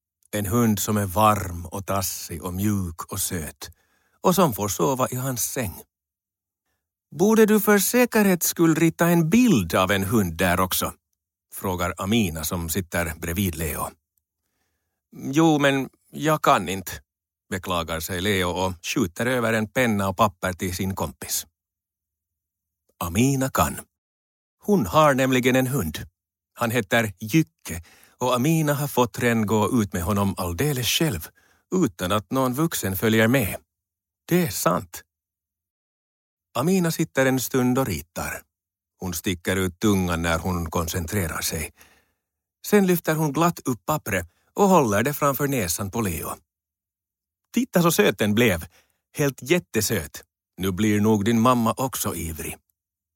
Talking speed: 140 wpm